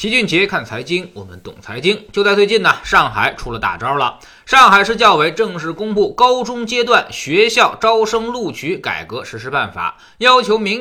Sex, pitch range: male, 200-270 Hz